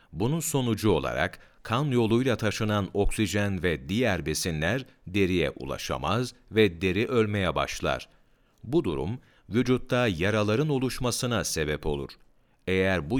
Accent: native